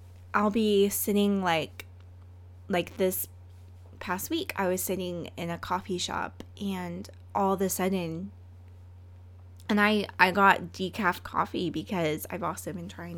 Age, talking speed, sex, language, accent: 20-39, 140 wpm, female, English, American